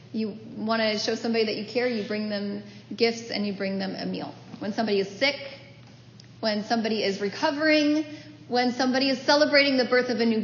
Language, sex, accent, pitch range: English, female, American, 220-275 Hz